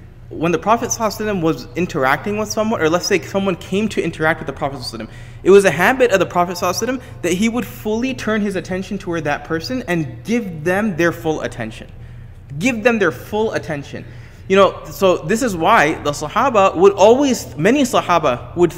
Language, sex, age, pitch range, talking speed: English, male, 20-39, 135-205 Hz, 185 wpm